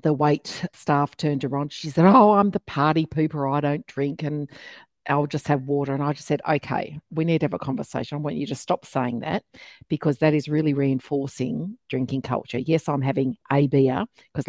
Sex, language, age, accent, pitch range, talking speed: female, English, 50-69, Australian, 135-170 Hz, 210 wpm